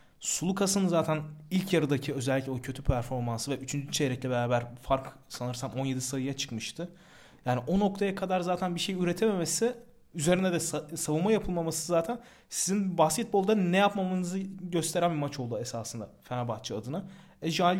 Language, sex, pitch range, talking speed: Turkish, male, 130-175 Hz, 140 wpm